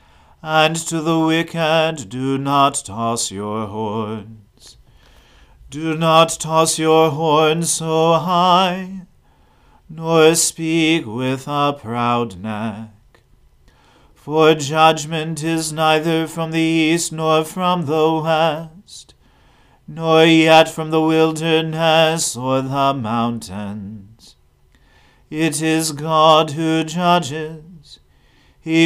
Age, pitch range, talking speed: 40-59, 130-160 Hz, 100 wpm